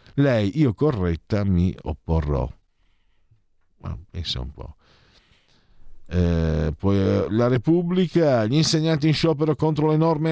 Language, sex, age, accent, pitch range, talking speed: Italian, male, 50-69, native, 90-135 Hz, 130 wpm